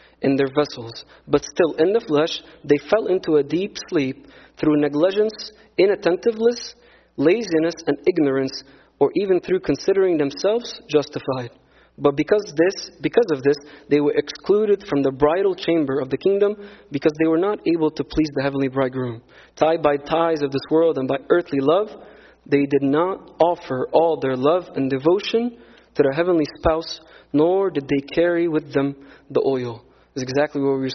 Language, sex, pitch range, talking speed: English, male, 135-170 Hz, 170 wpm